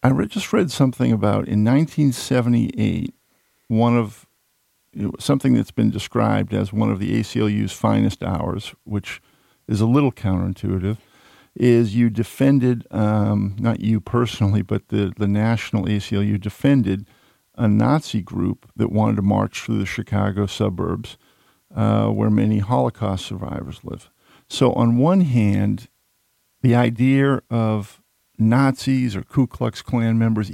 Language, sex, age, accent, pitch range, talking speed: English, male, 50-69, American, 105-120 Hz, 140 wpm